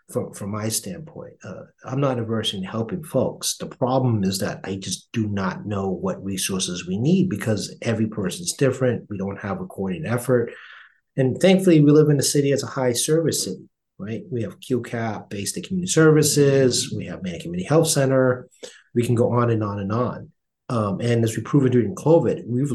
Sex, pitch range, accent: male, 110-150 Hz, American